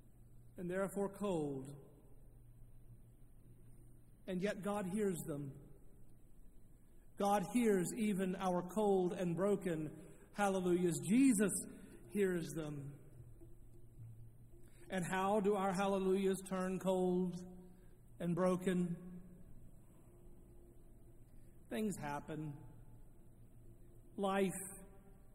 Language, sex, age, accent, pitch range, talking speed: English, male, 50-69, American, 140-195 Hz, 75 wpm